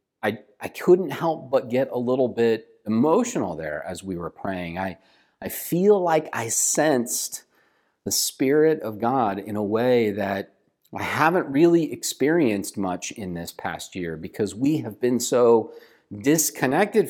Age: 40-59